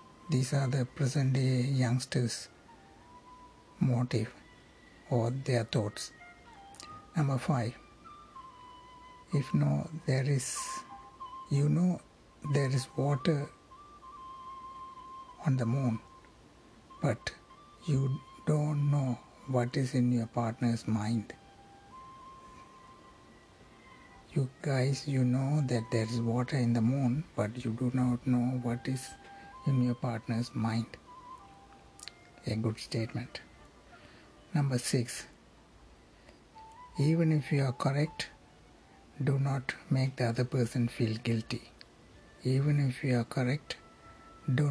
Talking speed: 105 wpm